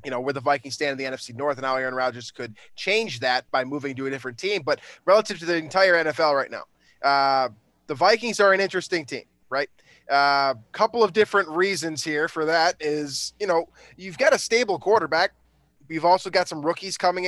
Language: English